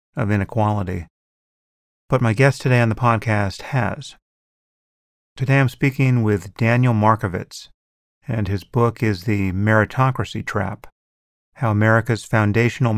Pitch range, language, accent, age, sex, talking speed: 100-120 Hz, English, American, 30-49, male, 120 wpm